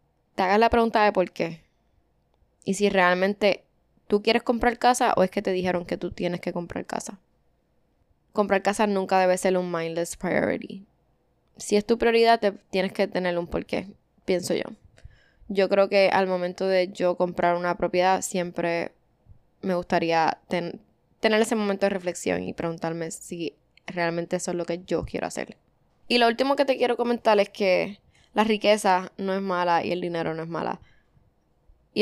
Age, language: 10-29, Spanish